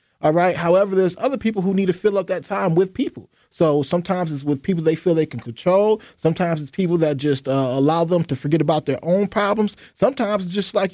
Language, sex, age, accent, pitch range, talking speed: English, male, 20-39, American, 160-200 Hz, 235 wpm